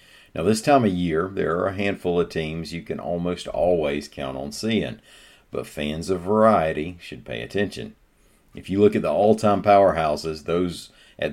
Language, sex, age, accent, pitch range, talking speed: English, male, 50-69, American, 75-95 Hz, 180 wpm